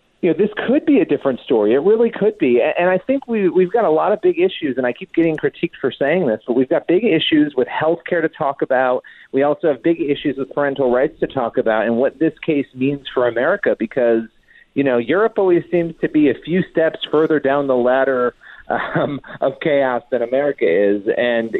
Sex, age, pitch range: male, 40-59, 130-170 Hz